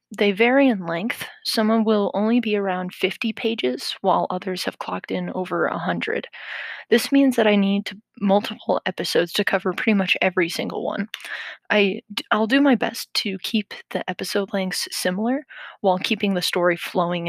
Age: 20-39